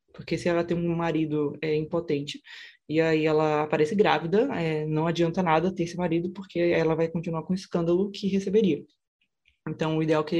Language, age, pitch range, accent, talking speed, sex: Portuguese, 20-39, 160-195 Hz, Brazilian, 195 wpm, female